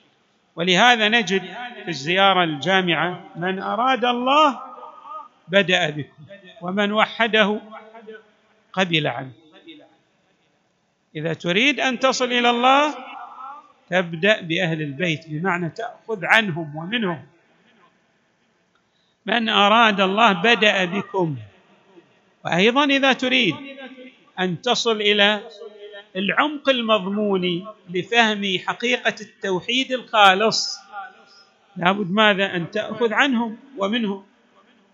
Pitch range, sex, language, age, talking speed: 185-245 Hz, male, Arabic, 50-69, 85 wpm